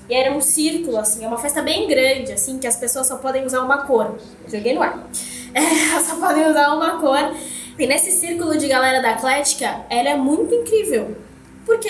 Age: 10-29